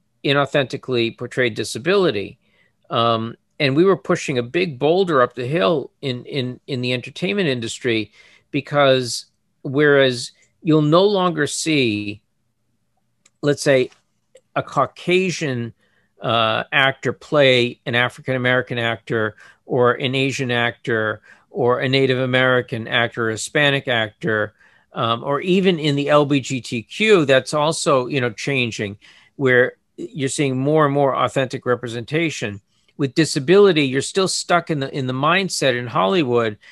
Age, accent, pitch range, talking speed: 50-69, American, 120-155 Hz, 130 wpm